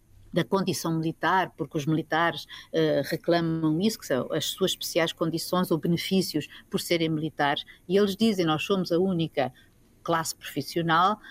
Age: 50-69